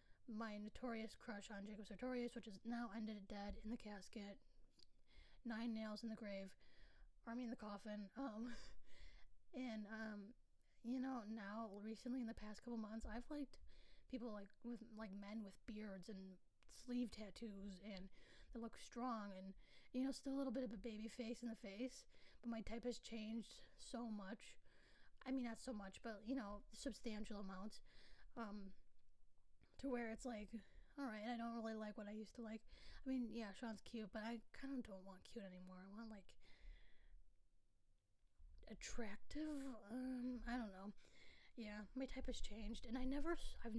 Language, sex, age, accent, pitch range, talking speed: English, female, 20-39, American, 205-240 Hz, 175 wpm